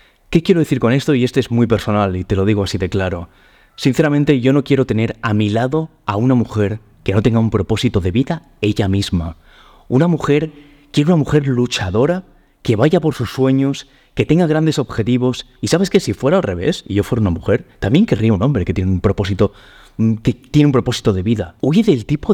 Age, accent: 30-49, Spanish